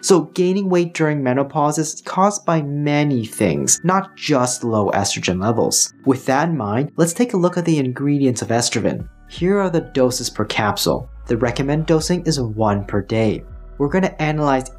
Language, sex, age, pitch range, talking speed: English, male, 30-49, 120-170 Hz, 185 wpm